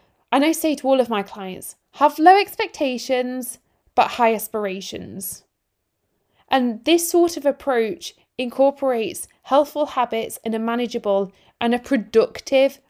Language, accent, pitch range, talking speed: English, British, 225-280 Hz, 130 wpm